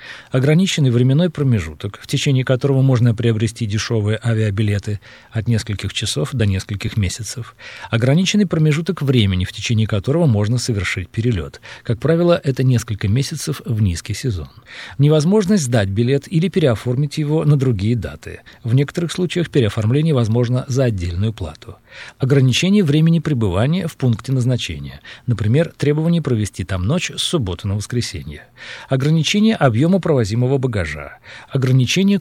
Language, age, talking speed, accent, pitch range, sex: Russian, 40-59, 130 wpm, native, 110-150 Hz, male